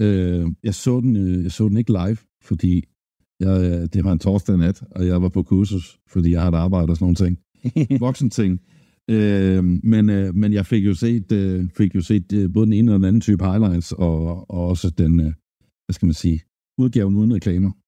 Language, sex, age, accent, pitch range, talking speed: Danish, male, 60-79, native, 90-110 Hz, 190 wpm